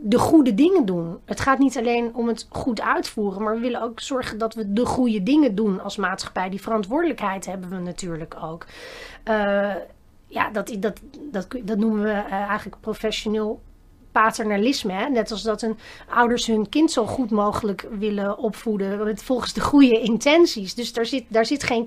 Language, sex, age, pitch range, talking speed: Dutch, female, 30-49, 210-250 Hz, 180 wpm